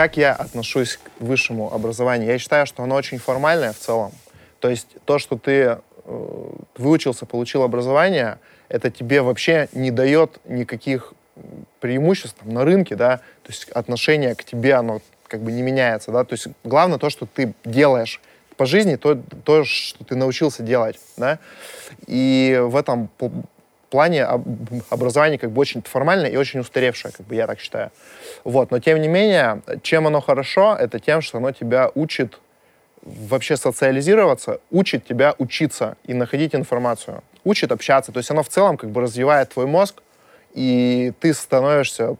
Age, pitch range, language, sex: 20-39, 120-145 Hz, Russian, male